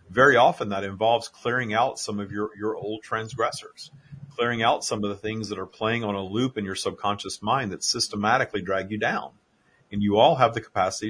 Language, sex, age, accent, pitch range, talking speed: English, male, 40-59, American, 100-115 Hz, 210 wpm